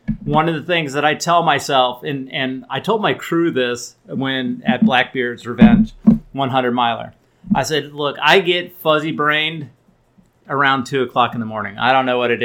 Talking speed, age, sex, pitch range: 190 wpm, 30-49, male, 125-160 Hz